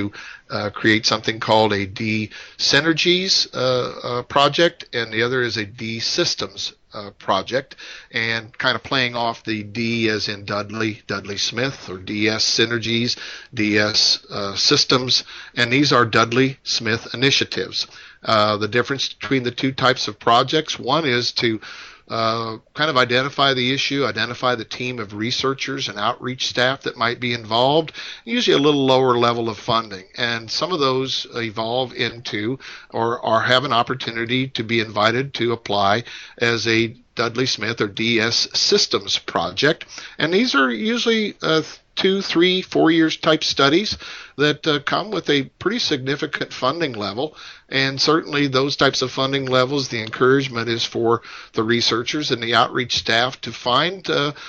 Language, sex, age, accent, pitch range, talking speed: English, male, 50-69, American, 115-140 Hz, 160 wpm